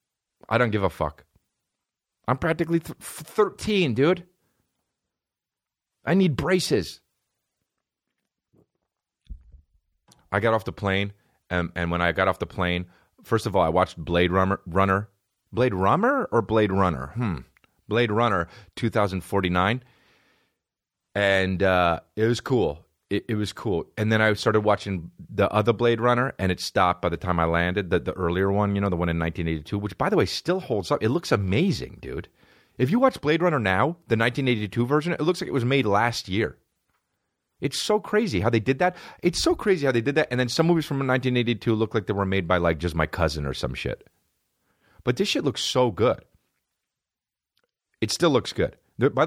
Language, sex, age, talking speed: English, male, 30-49, 180 wpm